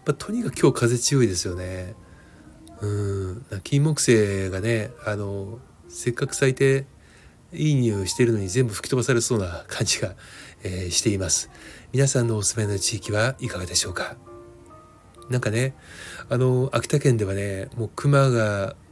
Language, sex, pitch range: Japanese, male, 95-125 Hz